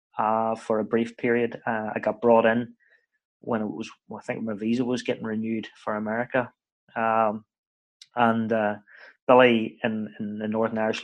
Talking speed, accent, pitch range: 165 wpm, British, 110-120 Hz